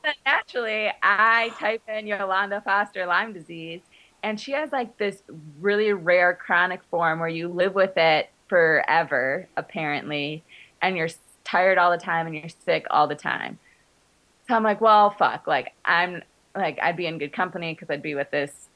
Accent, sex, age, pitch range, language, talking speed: American, female, 20-39, 165-220 Hz, English, 175 wpm